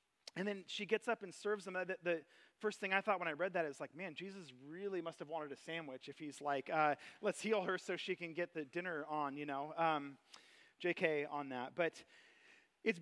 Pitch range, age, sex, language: 175-220 Hz, 30-49, male, English